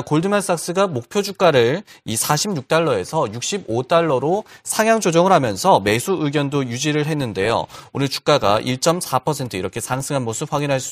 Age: 30-49